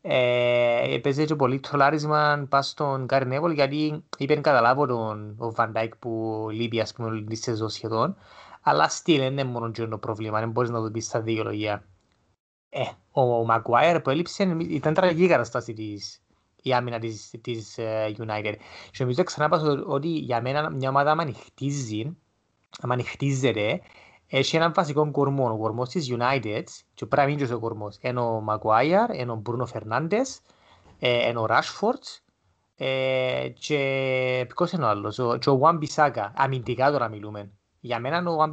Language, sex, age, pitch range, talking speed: Greek, male, 20-39, 110-145 Hz, 120 wpm